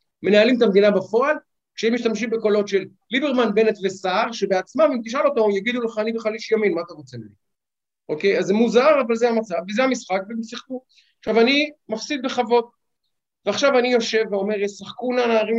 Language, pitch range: Hebrew, 195-235 Hz